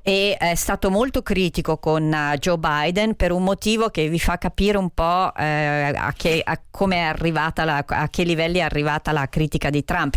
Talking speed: 190 wpm